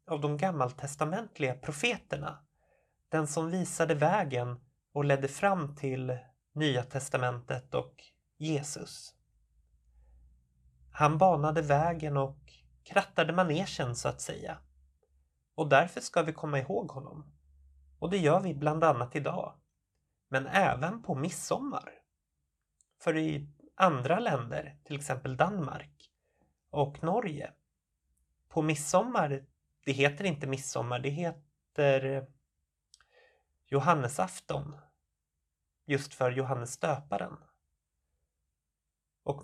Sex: male